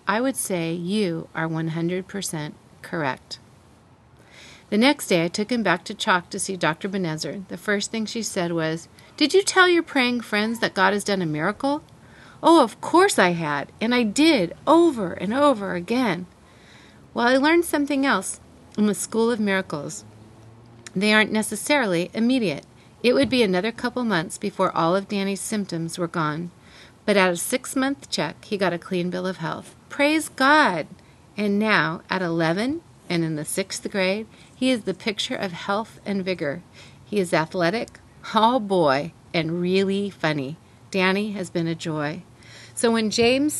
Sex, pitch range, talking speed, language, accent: female, 175-230 Hz, 170 wpm, English, American